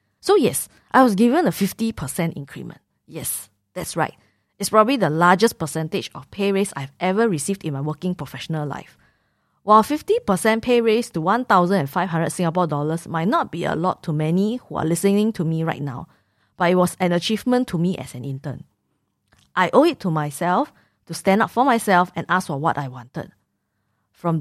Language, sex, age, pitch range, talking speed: English, female, 20-39, 155-200 Hz, 185 wpm